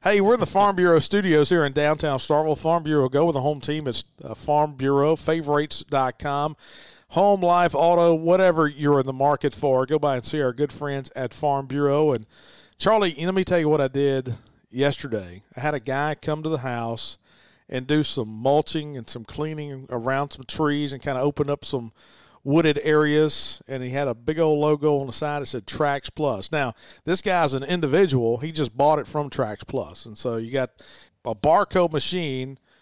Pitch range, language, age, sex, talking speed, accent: 135-155 Hz, English, 40-59, male, 200 wpm, American